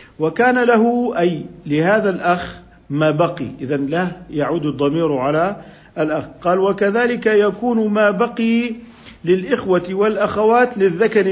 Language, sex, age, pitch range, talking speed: Arabic, male, 50-69, 165-215 Hz, 110 wpm